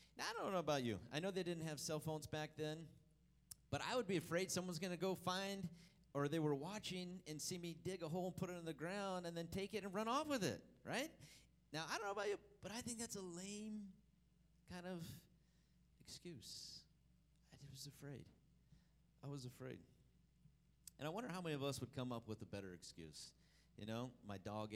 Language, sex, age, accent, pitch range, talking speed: English, male, 40-59, American, 110-170 Hz, 215 wpm